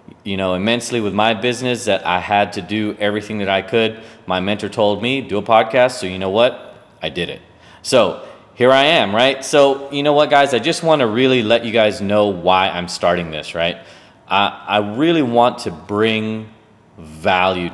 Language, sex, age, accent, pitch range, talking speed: English, male, 30-49, American, 95-110 Hz, 205 wpm